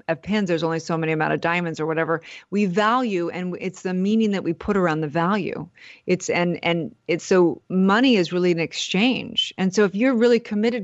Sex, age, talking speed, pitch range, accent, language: female, 30-49, 215 wpm, 175-220 Hz, American, English